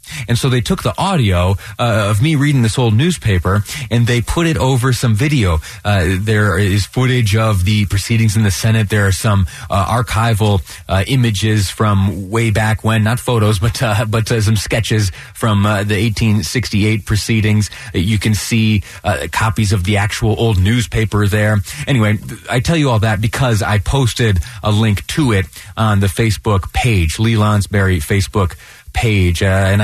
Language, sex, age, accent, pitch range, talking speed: English, male, 30-49, American, 95-115 Hz, 180 wpm